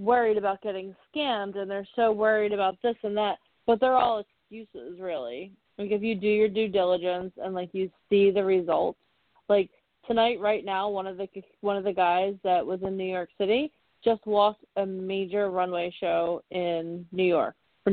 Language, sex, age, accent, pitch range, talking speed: English, female, 20-39, American, 185-225 Hz, 190 wpm